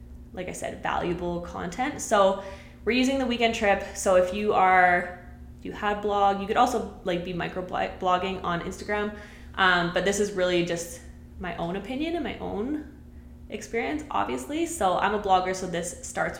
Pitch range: 175-205 Hz